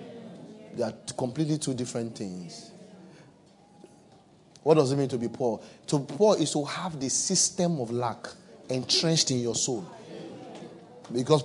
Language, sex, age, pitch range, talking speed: English, male, 30-49, 130-170 Hz, 145 wpm